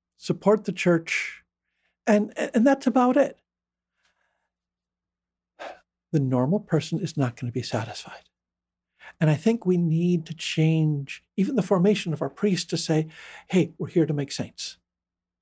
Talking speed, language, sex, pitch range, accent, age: 150 wpm, English, male, 155-215 Hz, American, 50-69